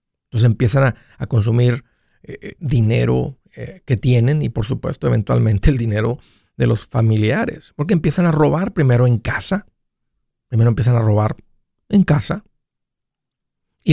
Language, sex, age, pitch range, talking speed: Spanish, male, 50-69, 115-145 Hz, 140 wpm